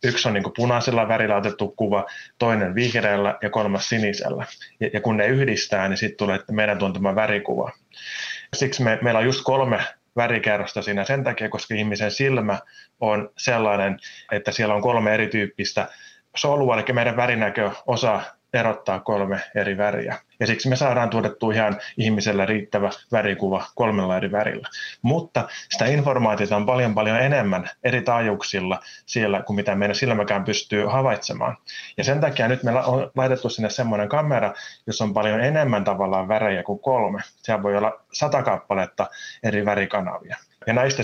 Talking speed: 155 wpm